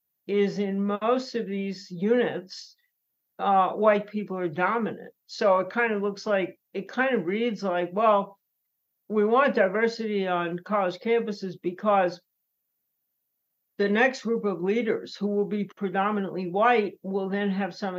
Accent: American